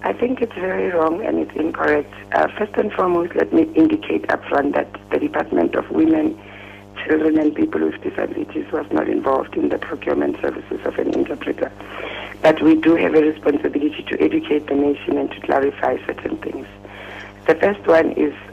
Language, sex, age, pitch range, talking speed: English, female, 60-79, 100-160 Hz, 180 wpm